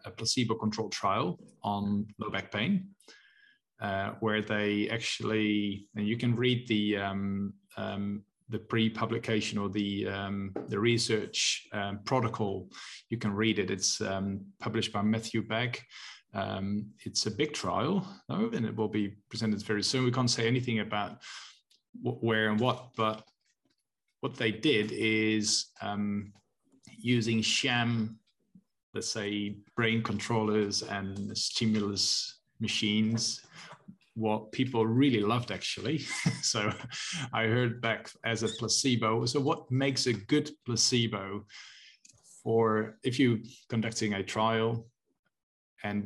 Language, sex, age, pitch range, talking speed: English, male, 20-39, 105-125 Hz, 130 wpm